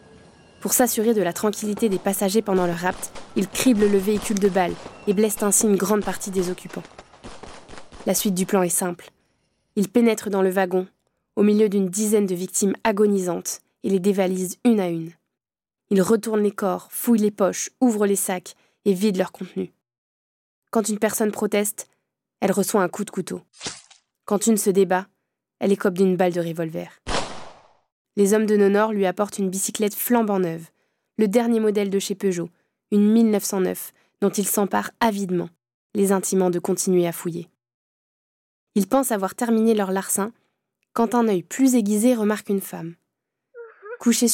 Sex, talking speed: female, 170 wpm